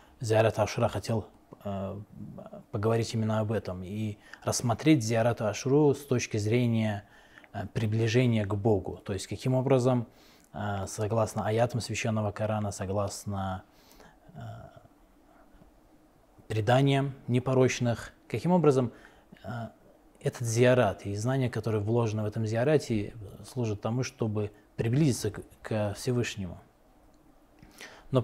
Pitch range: 105-130 Hz